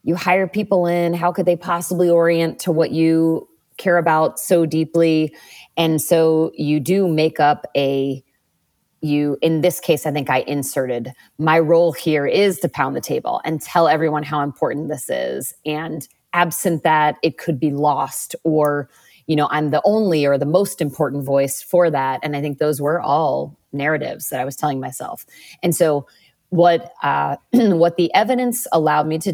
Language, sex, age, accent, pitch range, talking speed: English, female, 30-49, American, 140-175 Hz, 180 wpm